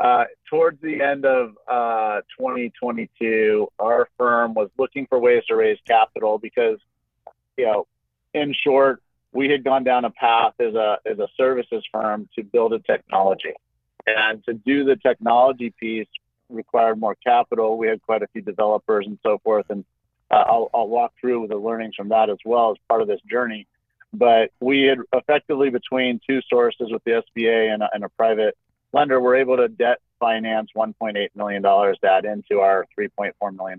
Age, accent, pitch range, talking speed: 40-59, American, 105-130 Hz, 180 wpm